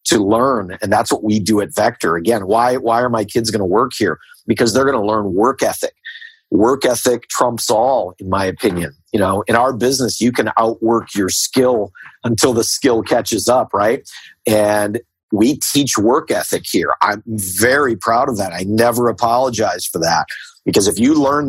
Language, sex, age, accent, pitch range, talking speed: English, male, 50-69, American, 105-125 Hz, 195 wpm